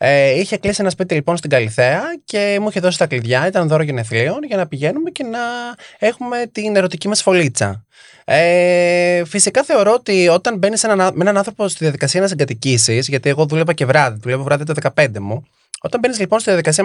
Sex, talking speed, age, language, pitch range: male, 200 wpm, 20-39, Greek, 145-230 Hz